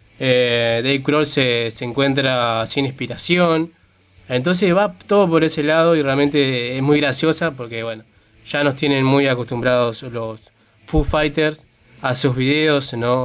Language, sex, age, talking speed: Spanish, male, 20-39, 150 wpm